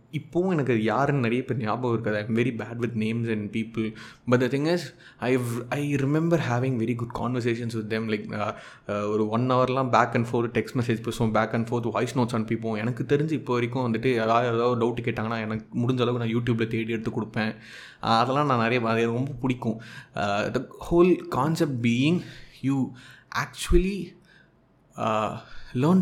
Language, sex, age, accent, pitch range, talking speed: Tamil, male, 20-39, native, 115-140 Hz, 175 wpm